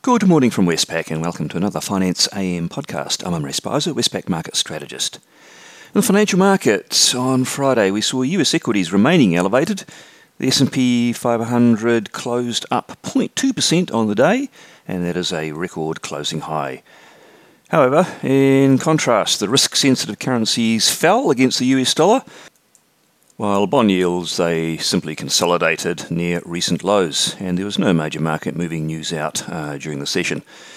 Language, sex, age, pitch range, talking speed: English, male, 40-59, 80-125 Hz, 150 wpm